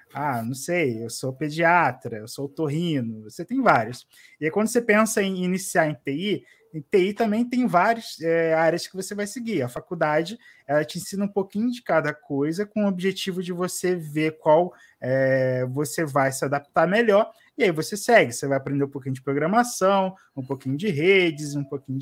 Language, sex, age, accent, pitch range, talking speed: Portuguese, male, 20-39, Brazilian, 150-210 Hz, 195 wpm